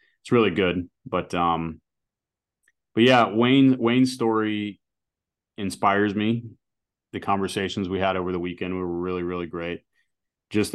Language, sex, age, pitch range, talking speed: English, male, 30-49, 90-100 Hz, 135 wpm